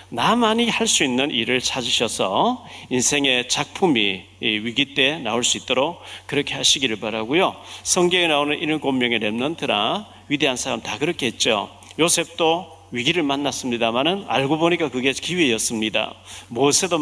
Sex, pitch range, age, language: male, 120-180 Hz, 40-59, Korean